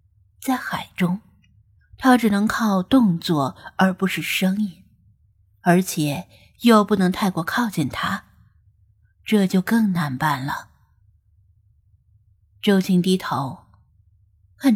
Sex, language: female, Chinese